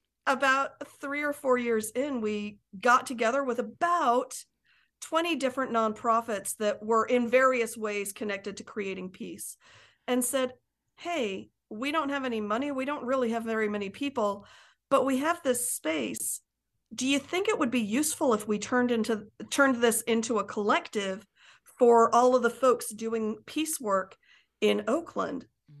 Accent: American